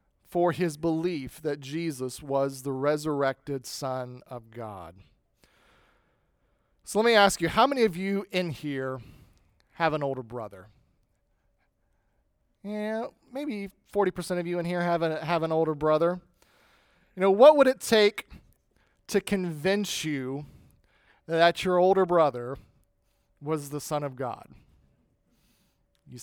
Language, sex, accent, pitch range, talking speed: English, male, American, 130-200 Hz, 130 wpm